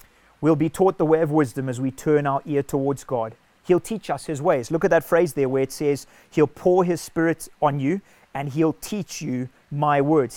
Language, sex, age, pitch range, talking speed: English, male, 30-49, 135-165 Hz, 225 wpm